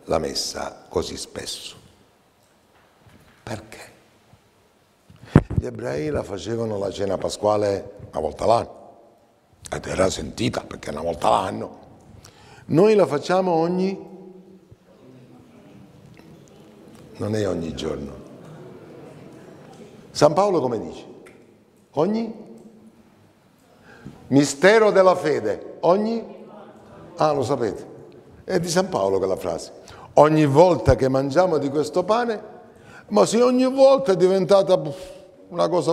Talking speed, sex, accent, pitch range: 105 wpm, male, native, 115-185 Hz